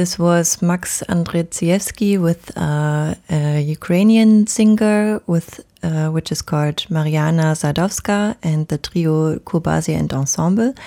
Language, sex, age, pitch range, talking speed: Hungarian, female, 20-39, 155-190 Hz, 120 wpm